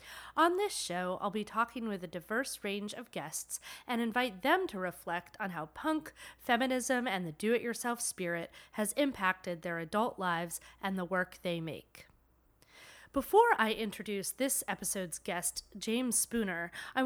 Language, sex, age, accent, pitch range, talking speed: English, female, 30-49, American, 185-240 Hz, 155 wpm